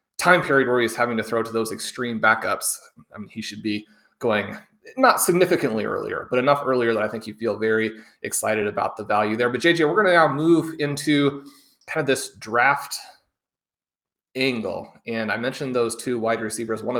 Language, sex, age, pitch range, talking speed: English, male, 30-49, 115-160 Hz, 195 wpm